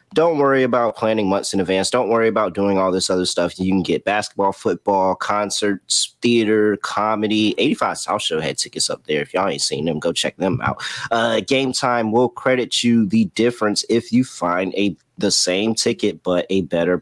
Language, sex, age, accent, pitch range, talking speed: English, male, 30-49, American, 100-135 Hz, 200 wpm